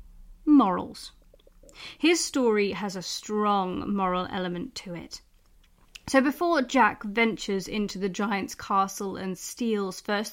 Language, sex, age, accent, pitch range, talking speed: English, female, 30-49, British, 195-275 Hz, 120 wpm